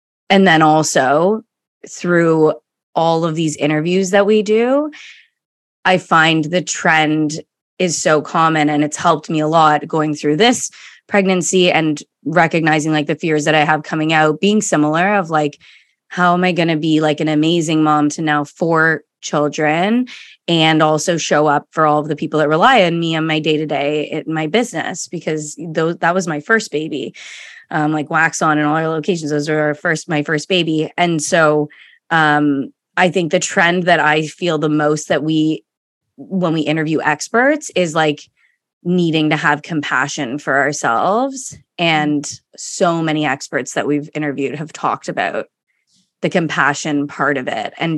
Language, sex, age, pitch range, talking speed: English, female, 20-39, 150-175 Hz, 170 wpm